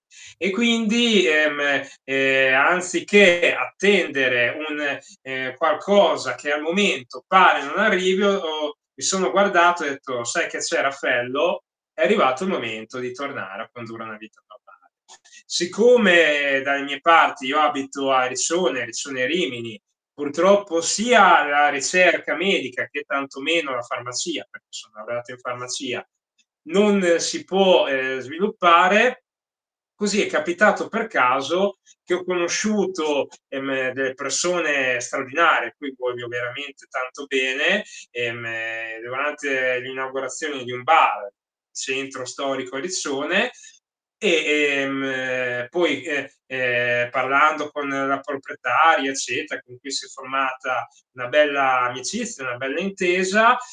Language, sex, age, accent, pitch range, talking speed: Italian, male, 20-39, native, 130-180 Hz, 130 wpm